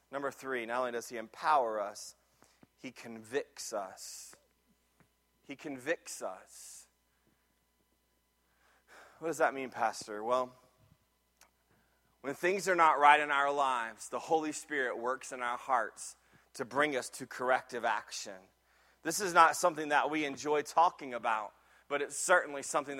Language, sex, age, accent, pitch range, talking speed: English, male, 30-49, American, 140-200 Hz, 140 wpm